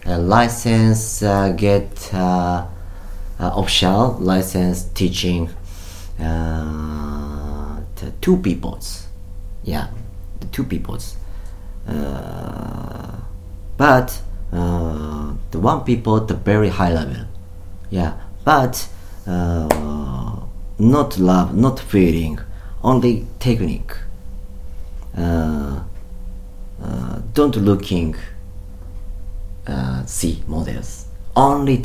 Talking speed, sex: 90 wpm, male